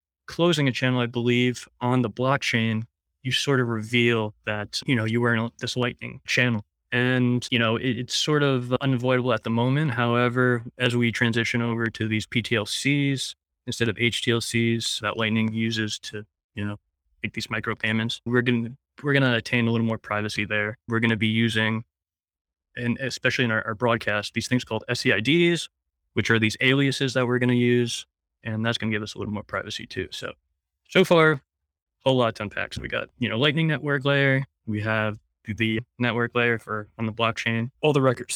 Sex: male